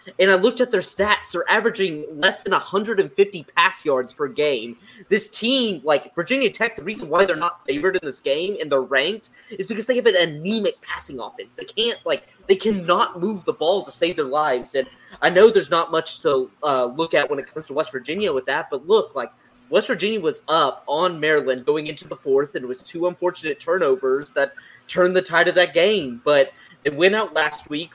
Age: 20-39